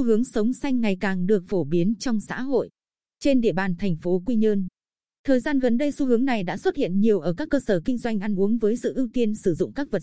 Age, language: 20-39, Vietnamese